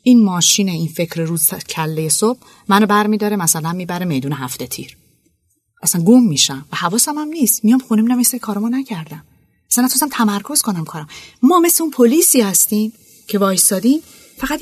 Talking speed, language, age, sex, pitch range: 170 wpm, Persian, 30-49, female, 155-240 Hz